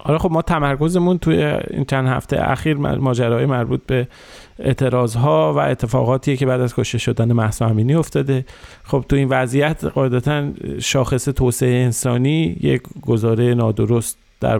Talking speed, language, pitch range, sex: 150 wpm, Persian, 130-165 Hz, male